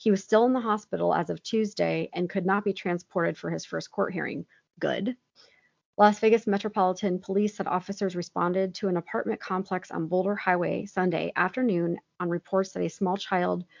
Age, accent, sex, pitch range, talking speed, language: 30-49, American, female, 175-215 Hz, 185 wpm, English